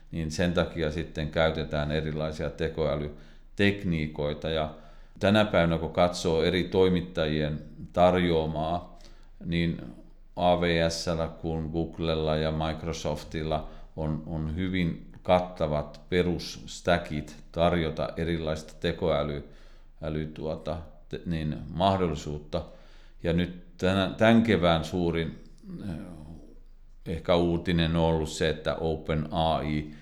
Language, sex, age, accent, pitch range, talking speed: Finnish, male, 50-69, native, 75-85 Hz, 90 wpm